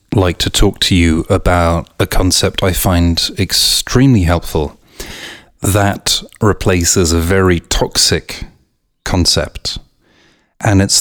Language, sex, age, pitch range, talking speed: English, male, 30-49, 80-95 Hz, 110 wpm